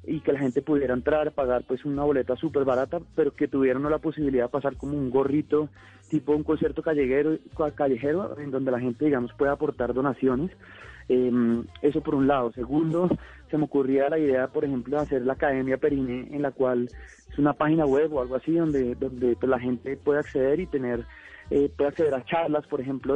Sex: male